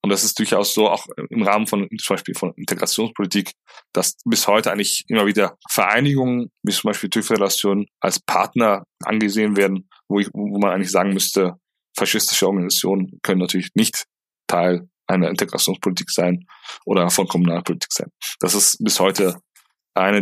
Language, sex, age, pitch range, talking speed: German, male, 20-39, 95-125 Hz, 160 wpm